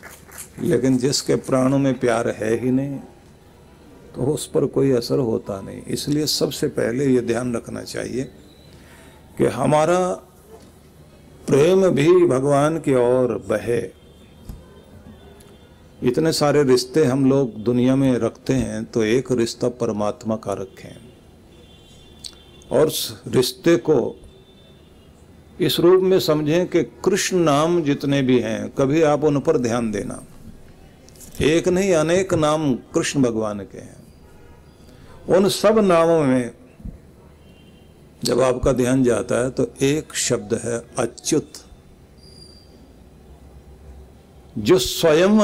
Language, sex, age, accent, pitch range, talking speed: Hindi, male, 50-69, native, 95-150 Hz, 115 wpm